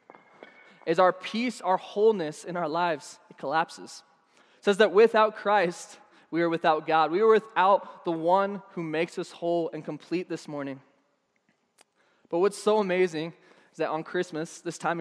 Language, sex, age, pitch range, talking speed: English, male, 20-39, 160-185 Hz, 170 wpm